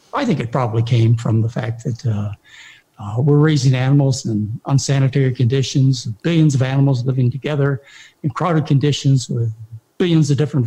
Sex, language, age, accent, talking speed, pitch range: male, English, 60-79, American, 165 wpm, 120-170 Hz